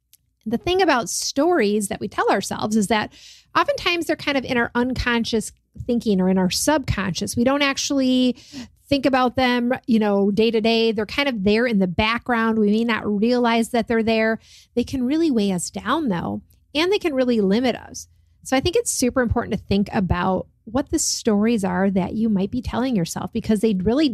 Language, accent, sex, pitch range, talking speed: English, American, female, 210-265 Hz, 205 wpm